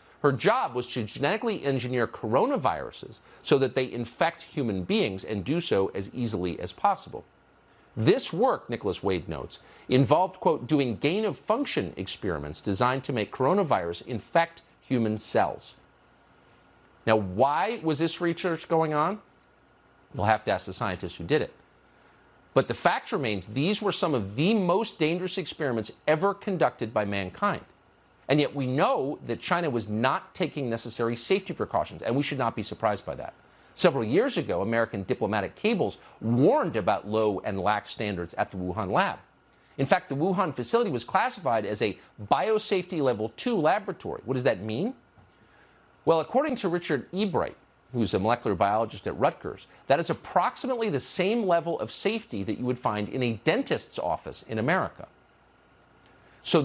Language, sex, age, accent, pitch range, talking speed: English, male, 50-69, American, 110-170 Hz, 165 wpm